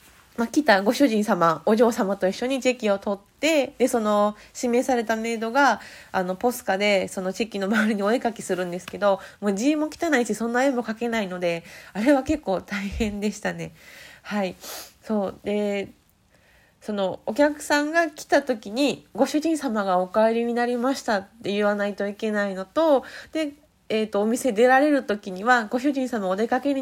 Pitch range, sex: 200-275 Hz, female